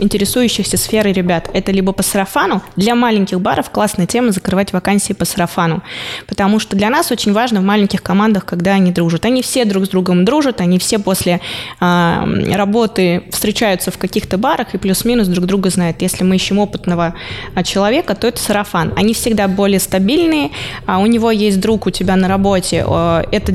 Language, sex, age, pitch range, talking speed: Russian, female, 20-39, 185-215 Hz, 180 wpm